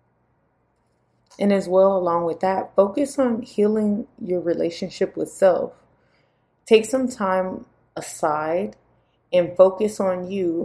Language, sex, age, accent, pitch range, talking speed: English, female, 20-39, American, 175-225 Hz, 120 wpm